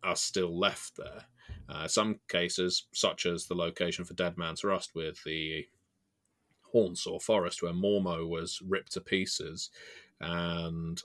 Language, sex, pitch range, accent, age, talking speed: English, male, 85-105 Hz, British, 30-49, 140 wpm